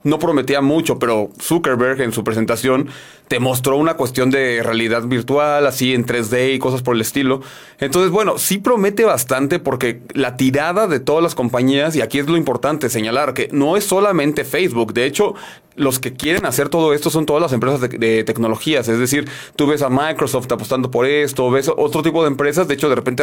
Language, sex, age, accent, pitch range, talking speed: Spanish, male, 30-49, Mexican, 125-160 Hz, 205 wpm